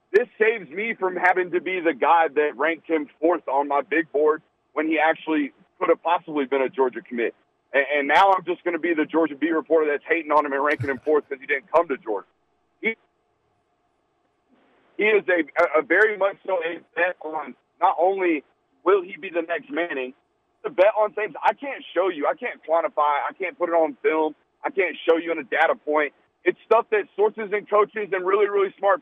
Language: English